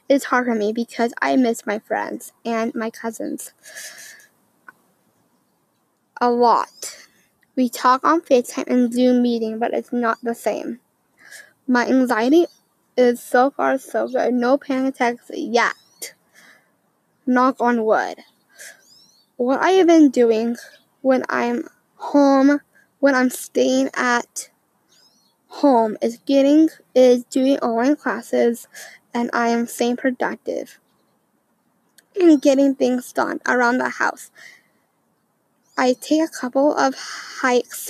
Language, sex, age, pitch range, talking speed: English, female, 10-29, 235-280 Hz, 120 wpm